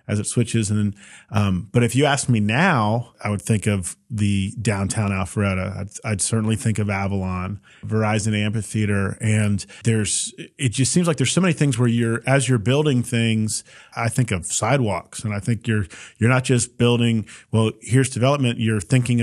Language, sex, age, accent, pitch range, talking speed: English, male, 40-59, American, 110-130 Hz, 185 wpm